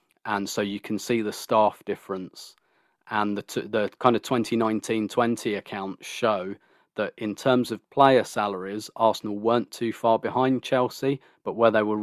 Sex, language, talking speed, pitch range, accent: male, English, 165 wpm, 100-110 Hz, British